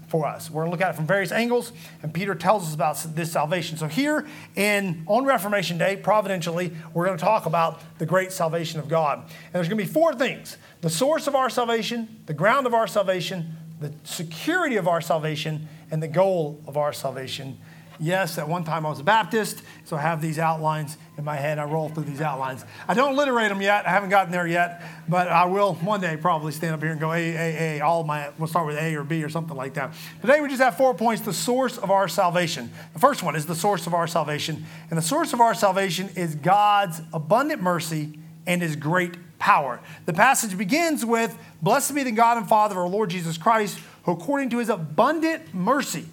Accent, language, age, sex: American, English, 30-49, male